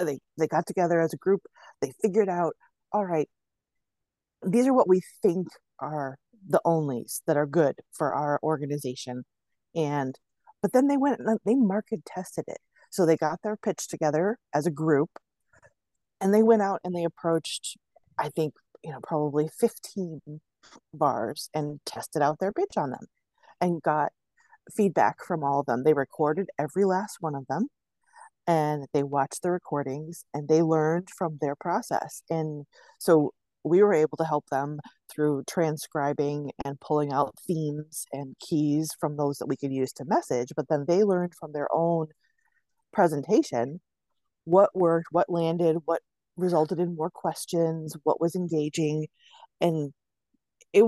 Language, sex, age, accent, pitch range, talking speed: English, female, 30-49, American, 150-185 Hz, 160 wpm